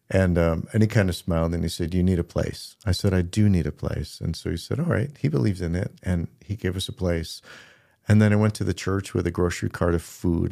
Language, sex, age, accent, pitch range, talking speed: English, male, 40-59, American, 90-115 Hz, 285 wpm